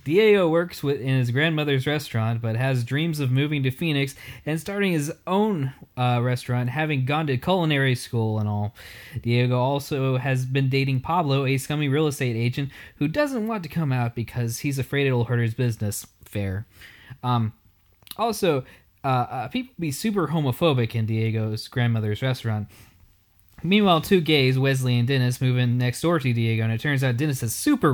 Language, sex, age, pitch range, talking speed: English, male, 20-39, 120-150 Hz, 175 wpm